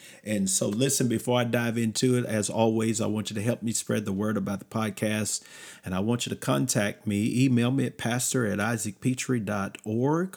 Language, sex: English, male